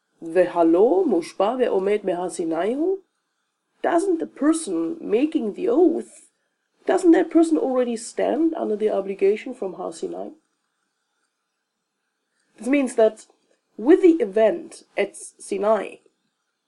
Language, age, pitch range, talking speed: English, 30-49, 225-360 Hz, 95 wpm